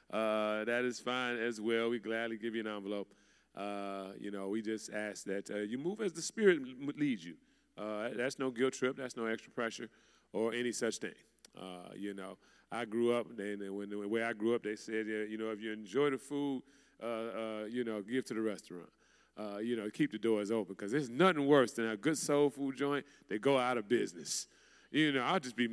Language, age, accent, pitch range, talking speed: English, 30-49, American, 110-145 Hz, 225 wpm